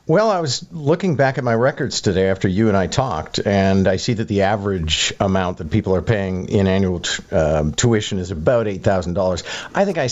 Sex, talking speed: male, 225 wpm